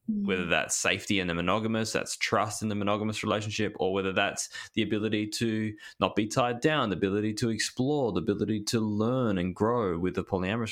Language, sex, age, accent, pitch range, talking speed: English, male, 20-39, Australian, 95-110 Hz, 195 wpm